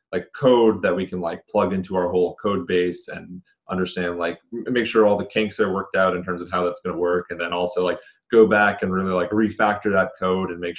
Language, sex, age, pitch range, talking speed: English, male, 20-39, 90-110 Hz, 245 wpm